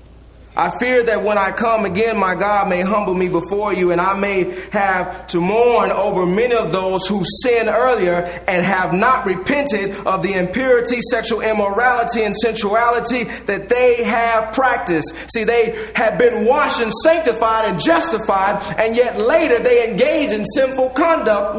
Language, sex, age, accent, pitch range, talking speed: English, male, 30-49, American, 165-230 Hz, 165 wpm